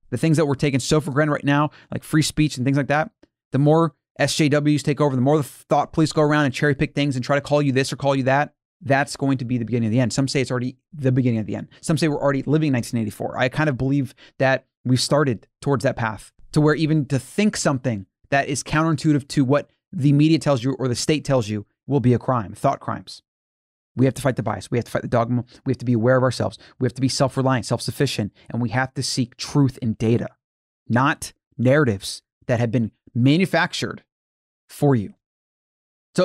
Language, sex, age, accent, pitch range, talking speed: English, male, 30-49, American, 125-145 Hz, 240 wpm